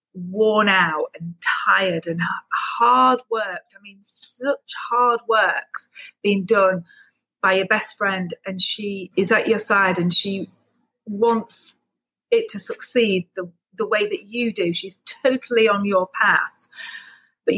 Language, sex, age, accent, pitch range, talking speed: English, female, 40-59, British, 170-215 Hz, 145 wpm